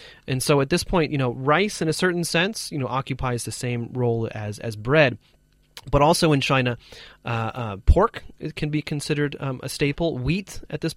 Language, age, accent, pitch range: Chinese, 30-49, American, 120-155 Hz